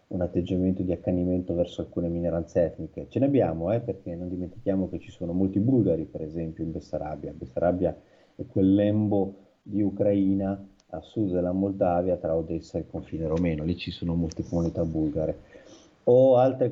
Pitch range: 90-105 Hz